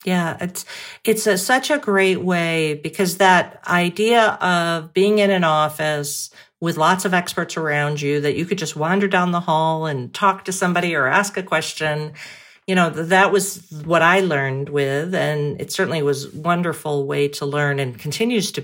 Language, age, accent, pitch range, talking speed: English, 50-69, American, 145-180 Hz, 180 wpm